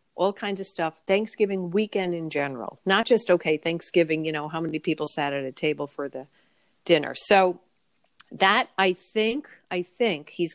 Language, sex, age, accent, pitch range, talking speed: English, female, 50-69, American, 160-195 Hz, 175 wpm